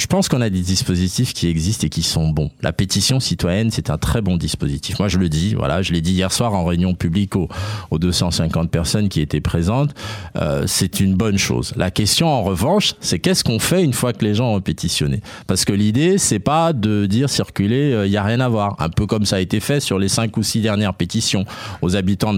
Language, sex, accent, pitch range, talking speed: French, male, French, 90-115 Hz, 240 wpm